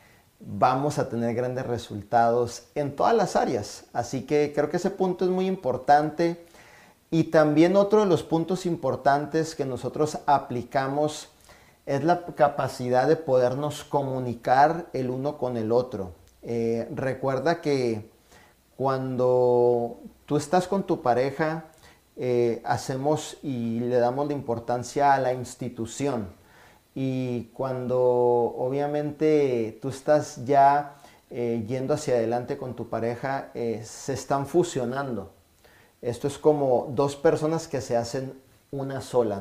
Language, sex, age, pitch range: Spanish, male, 40-59, 120-145 Hz